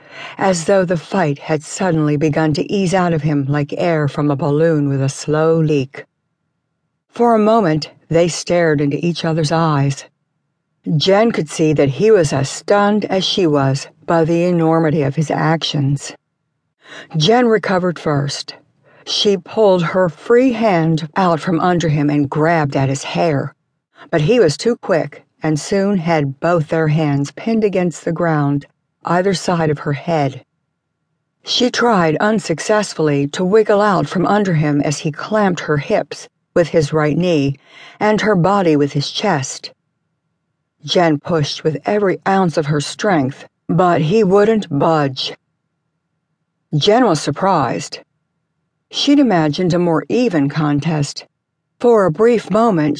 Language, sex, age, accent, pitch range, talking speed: English, female, 60-79, American, 150-185 Hz, 150 wpm